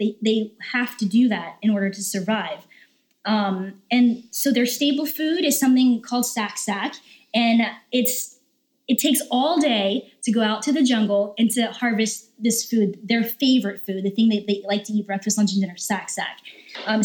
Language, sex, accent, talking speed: English, female, American, 185 wpm